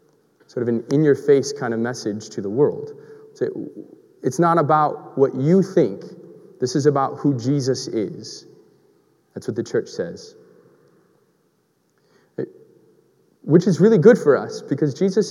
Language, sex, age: English, male, 20-39